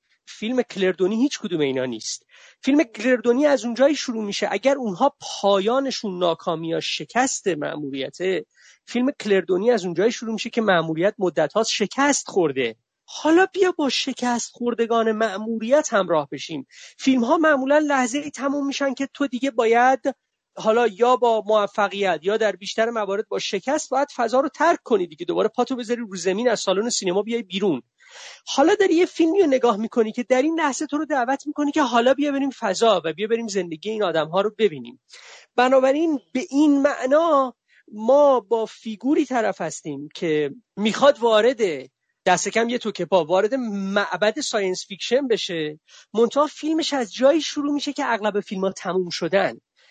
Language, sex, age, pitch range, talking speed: Persian, male, 30-49, 200-275 Hz, 165 wpm